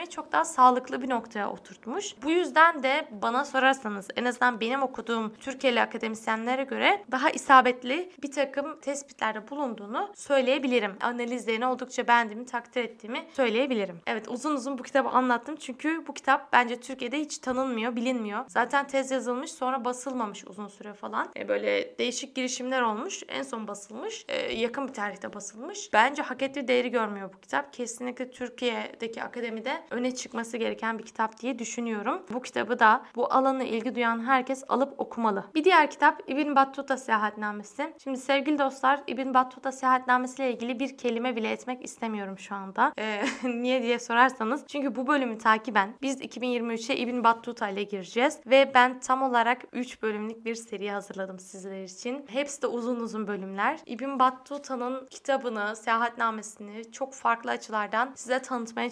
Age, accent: 10-29, native